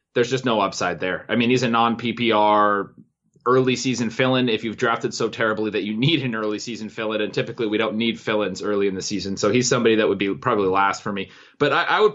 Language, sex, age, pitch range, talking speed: English, male, 20-39, 115-145 Hz, 240 wpm